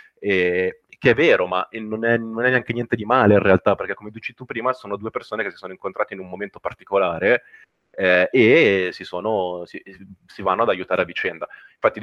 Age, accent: 30-49, native